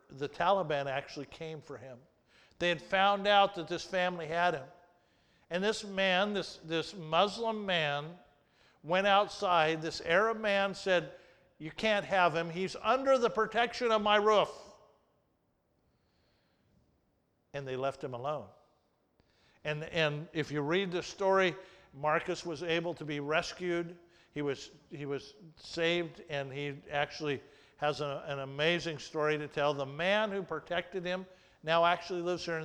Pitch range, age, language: 155-200 Hz, 50-69, English